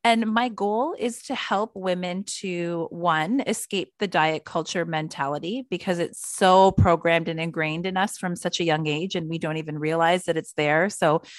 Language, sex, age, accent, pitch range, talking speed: English, female, 30-49, American, 160-195 Hz, 190 wpm